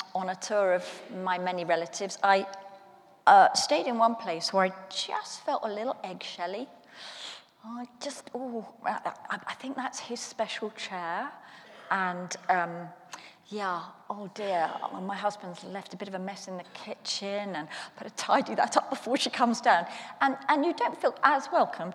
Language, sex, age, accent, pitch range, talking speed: English, female, 40-59, British, 180-235 Hz, 180 wpm